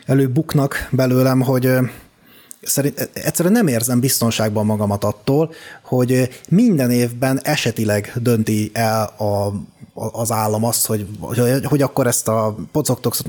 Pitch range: 115-145 Hz